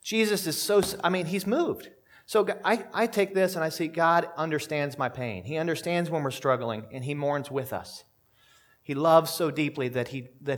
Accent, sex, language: American, male, English